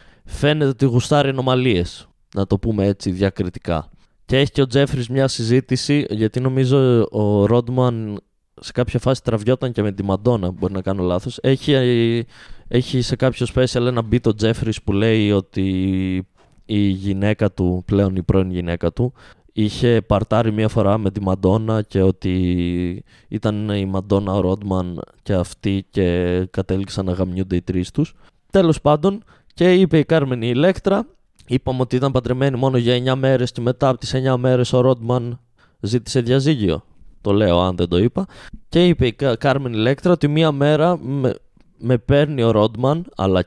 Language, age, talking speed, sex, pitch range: Greek, 20-39, 165 wpm, male, 100-135 Hz